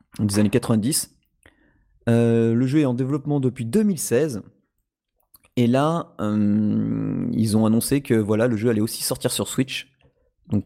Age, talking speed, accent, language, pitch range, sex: 30-49, 150 wpm, French, French, 110-130 Hz, male